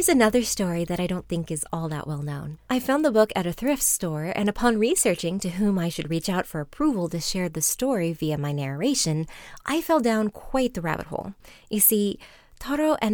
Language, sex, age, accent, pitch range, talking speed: English, female, 30-49, American, 165-230 Hz, 225 wpm